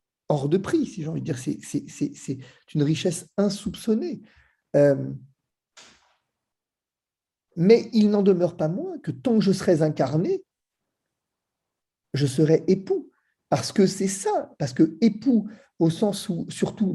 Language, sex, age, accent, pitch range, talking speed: French, male, 40-59, French, 145-220 Hz, 150 wpm